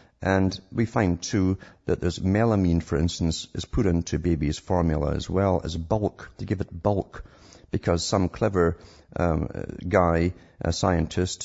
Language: English